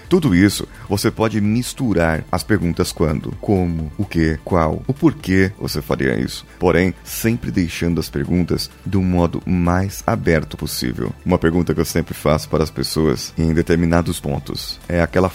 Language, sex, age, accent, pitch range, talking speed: Portuguese, male, 30-49, Brazilian, 80-115 Hz, 160 wpm